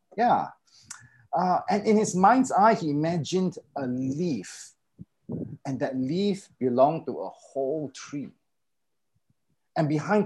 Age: 30-49